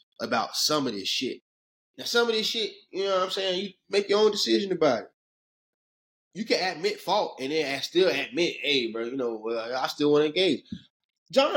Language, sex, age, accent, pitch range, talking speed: English, male, 20-39, American, 165-240 Hz, 215 wpm